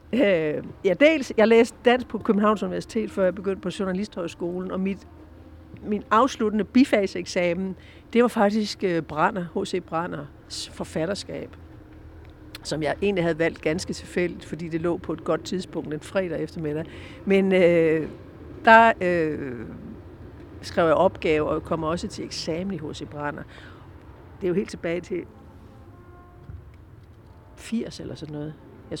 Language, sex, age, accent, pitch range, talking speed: Danish, female, 60-79, native, 150-210 Hz, 145 wpm